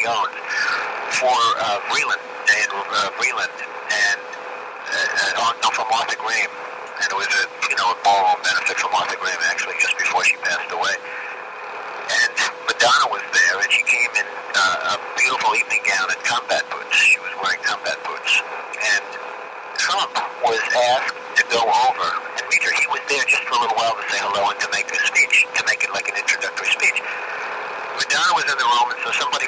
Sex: male